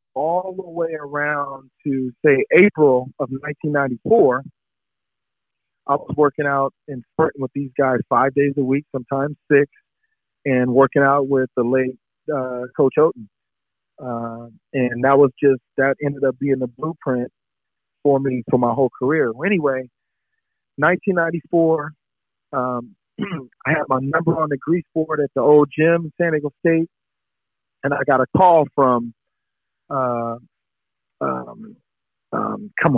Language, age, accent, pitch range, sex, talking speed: English, 40-59, American, 130-155 Hz, male, 140 wpm